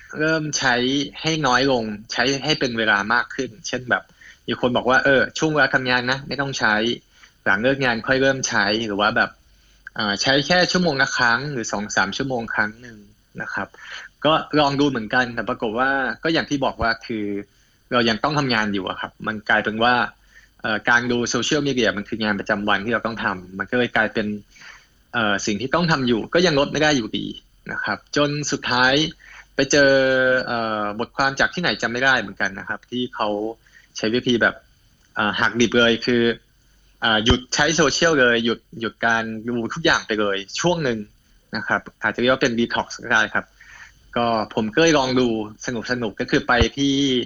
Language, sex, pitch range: Thai, male, 110-135 Hz